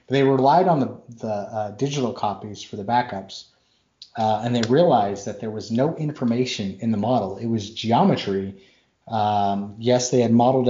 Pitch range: 105-130 Hz